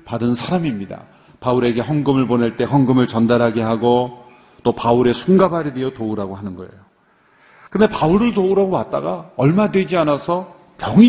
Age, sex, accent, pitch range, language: 40-59, male, native, 125-190 Hz, Korean